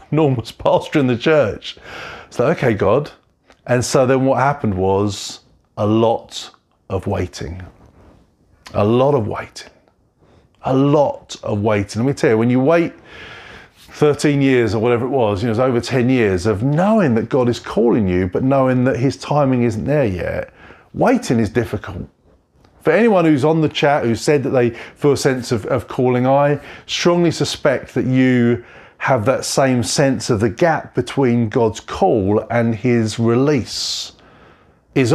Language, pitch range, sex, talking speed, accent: English, 110-145 Hz, male, 165 wpm, British